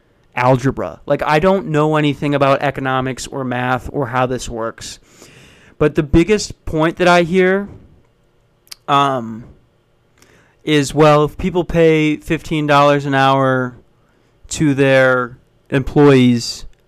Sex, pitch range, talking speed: male, 130-160 Hz, 120 wpm